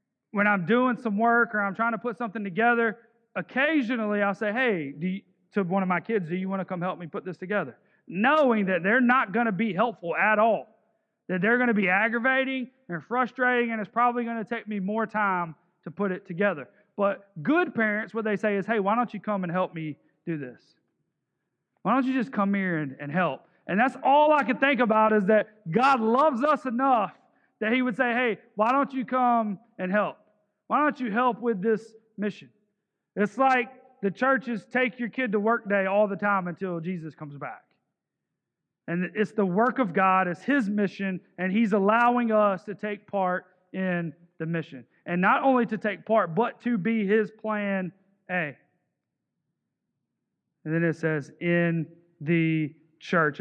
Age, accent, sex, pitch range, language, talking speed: 40-59, American, male, 180-235 Hz, English, 195 wpm